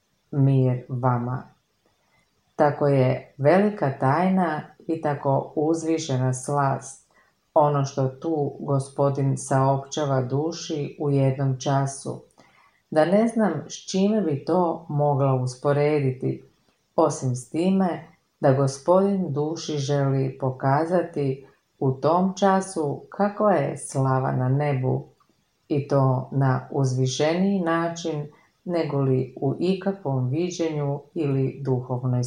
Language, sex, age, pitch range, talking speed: Croatian, female, 40-59, 130-155 Hz, 105 wpm